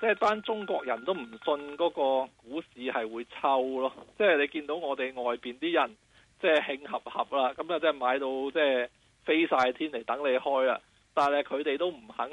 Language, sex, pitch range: Chinese, male, 125-155 Hz